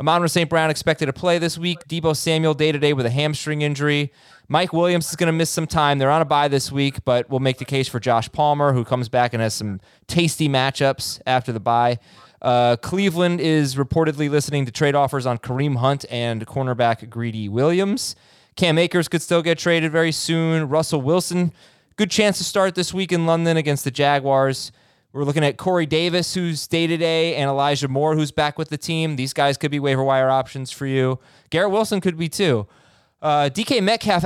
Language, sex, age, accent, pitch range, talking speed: English, male, 20-39, American, 135-165 Hz, 200 wpm